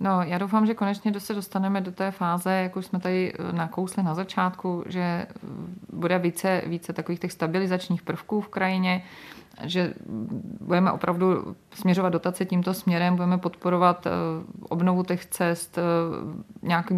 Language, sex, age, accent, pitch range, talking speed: Czech, female, 30-49, native, 170-185 Hz, 140 wpm